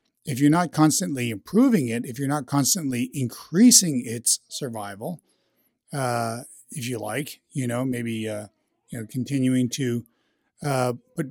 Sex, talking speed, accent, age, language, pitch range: male, 145 wpm, American, 50-69, English, 120-155 Hz